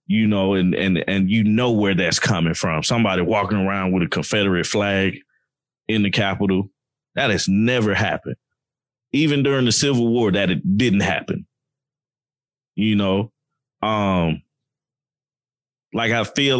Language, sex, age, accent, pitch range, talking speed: English, male, 20-39, American, 100-135 Hz, 145 wpm